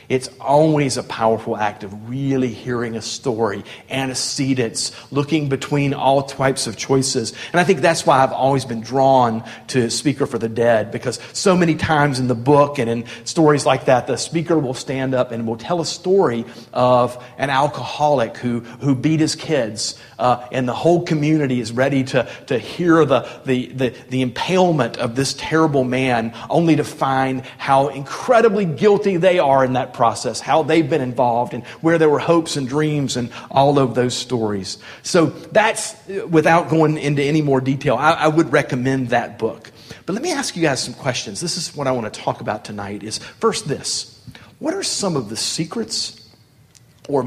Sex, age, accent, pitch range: male, 40-59, American, 120-155 Hz